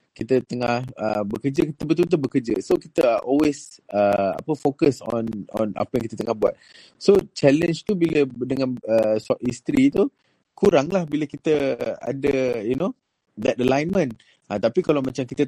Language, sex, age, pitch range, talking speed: Malay, male, 20-39, 115-150 Hz, 160 wpm